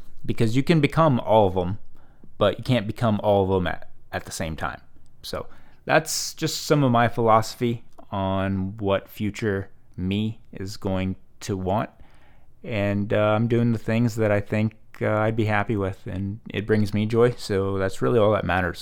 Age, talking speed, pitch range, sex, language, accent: 20-39, 190 wpm, 95-115 Hz, male, English, American